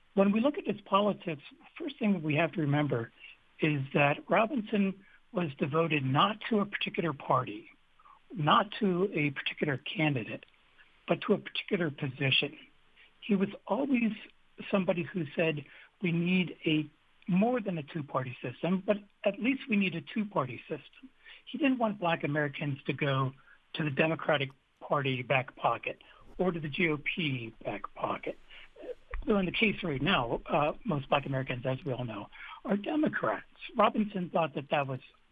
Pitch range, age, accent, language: 145-195 Hz, 60-79, American, English